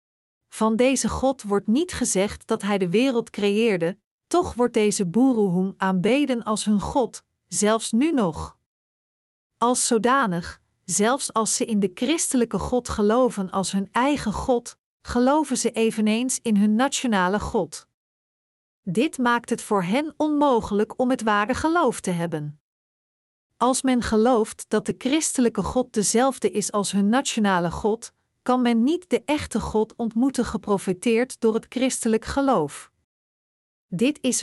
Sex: female